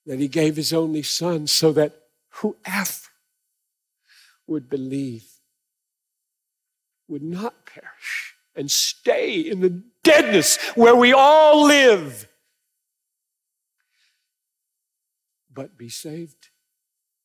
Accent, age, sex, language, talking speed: American, 50-69, male, English, 90 wpm